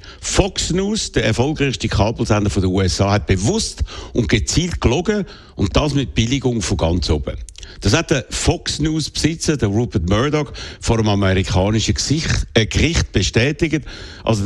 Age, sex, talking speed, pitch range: 60-79, male, 155 wpm, 95-130 Hz